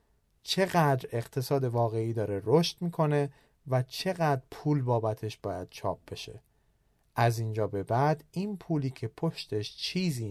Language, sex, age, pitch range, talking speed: Persian, male, 30-49, 115-160 Hz, 130 wpm